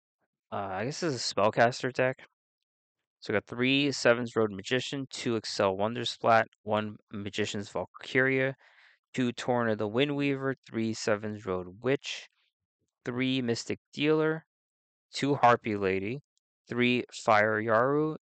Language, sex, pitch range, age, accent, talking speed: English, male, 105-130 Hz, 20-39, American, 125 wpm